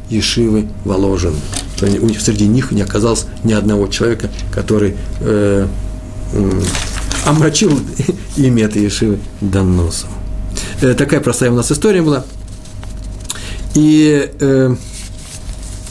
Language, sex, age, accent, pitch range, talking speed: Russian, male, 50-69, native, 100-160 Hz, 85 wpm